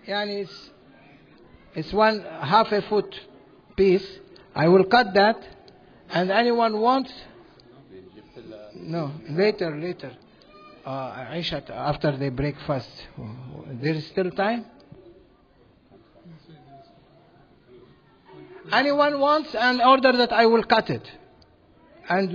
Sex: male